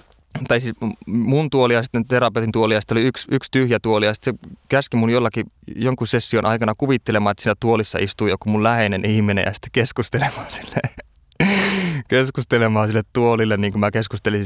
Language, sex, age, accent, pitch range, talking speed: Finnish, male, 20-39, native, 100-120 Hz, 180 wpm